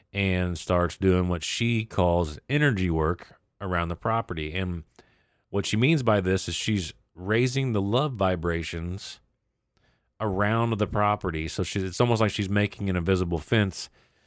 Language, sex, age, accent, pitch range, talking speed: English, male, 40-59, American, 85-110 Hz, 145 wpm